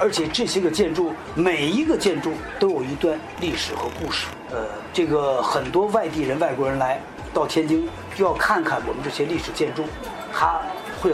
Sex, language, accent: male, Chinese, native